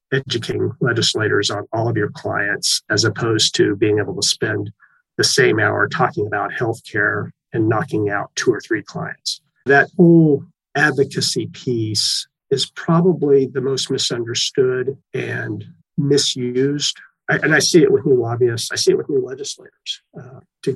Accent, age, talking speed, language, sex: American, 40-59, 155 wpm, English, male